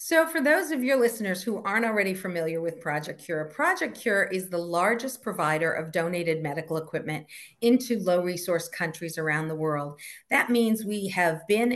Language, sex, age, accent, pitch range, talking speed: English, female, 50-69, American, 170-225 Hz, 175 wpm